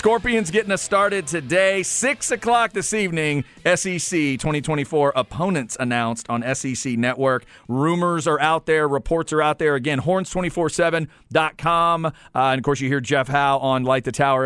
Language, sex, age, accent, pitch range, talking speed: English, male, 40-59, American, 125-160 Hz, 160 wpm